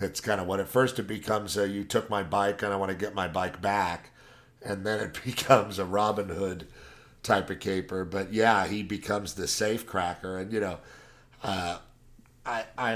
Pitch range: 80-105 Hz